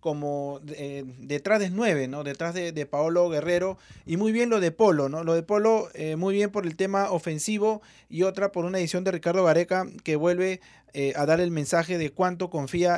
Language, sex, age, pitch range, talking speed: Spanish, male, 30-49, 140-180 Hz, 215 wpm